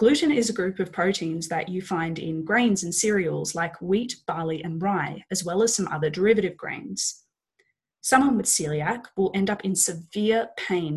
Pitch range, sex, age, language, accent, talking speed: 170-225 Hz, female, 20-39, English, Australian, 185 wpm